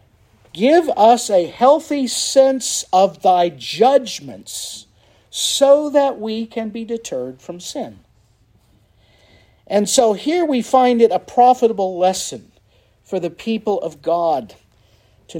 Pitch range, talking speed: 125-195 Hz, 120 wpm